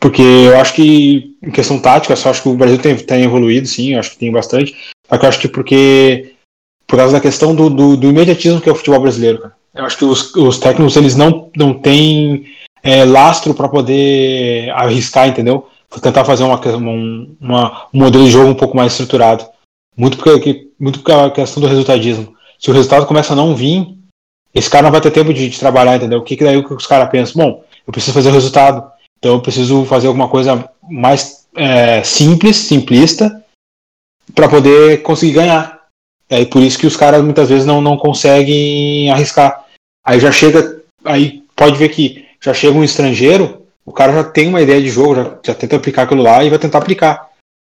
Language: Portuguese